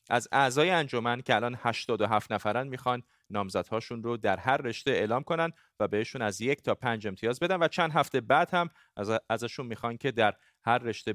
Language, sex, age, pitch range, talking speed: Persian, male, 30-49, 115-145 Hz, 190 wpm